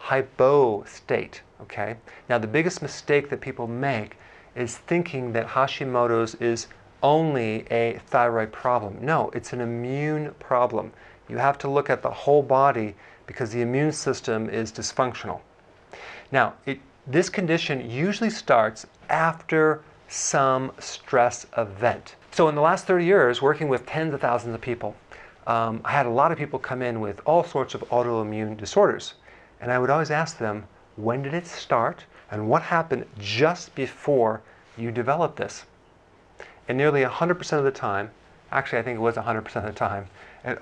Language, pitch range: English, 115-145 Hz